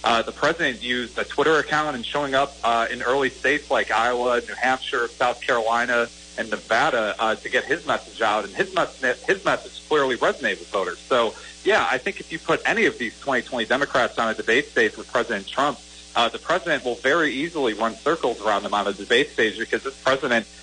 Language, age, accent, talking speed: English, 40-59, American, 210 wpm